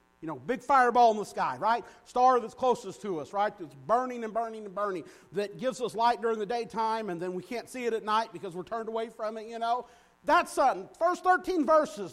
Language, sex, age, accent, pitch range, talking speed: English, male, 50-69, American, 195-325 Hz, 235 wpm